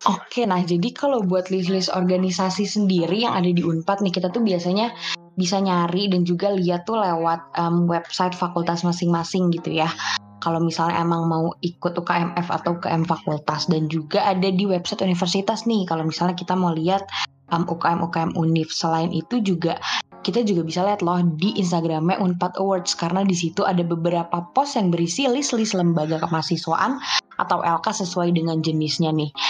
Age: 20-39